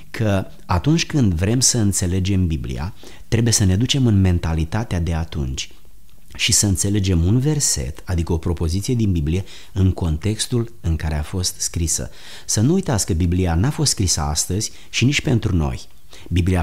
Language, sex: Romanian, male